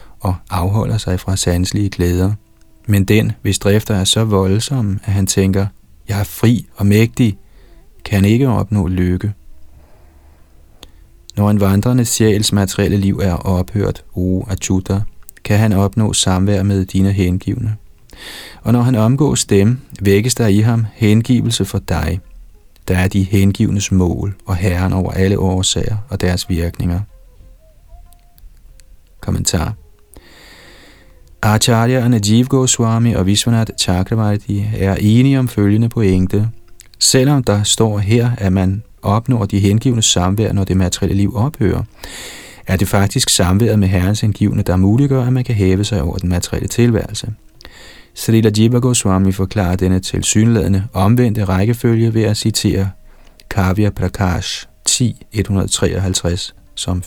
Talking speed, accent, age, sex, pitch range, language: 135 wpm, native, 30-49, male, 90-110 Hz, Danish